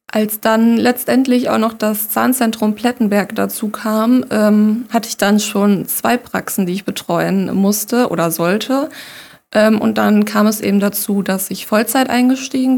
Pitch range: 205-245 Hz